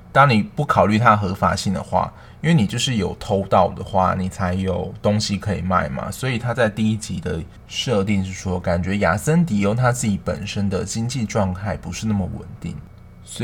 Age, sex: 20-39, male